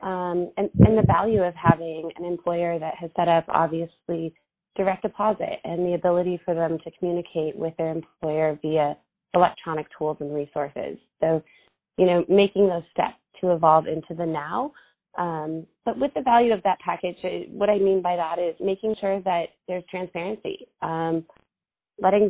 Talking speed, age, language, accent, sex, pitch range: 165 wpm, 30-49, English, American, female, 160-190 Hz